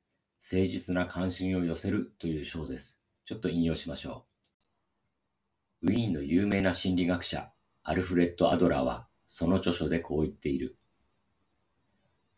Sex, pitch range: male, 80-95 Hz